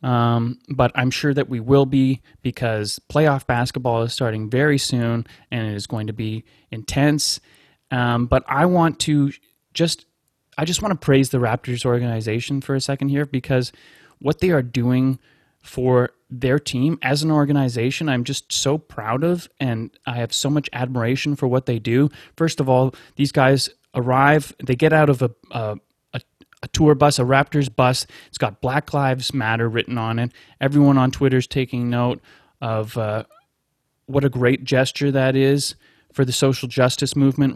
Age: 20-39